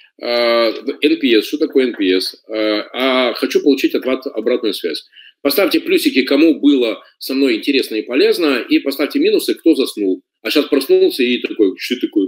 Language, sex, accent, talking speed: Russian, male, native, 155 wpm